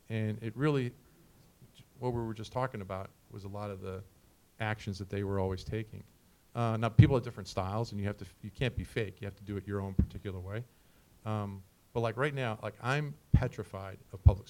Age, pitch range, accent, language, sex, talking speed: 40-59, 100-115 Hz, American, English, male, 225 wpm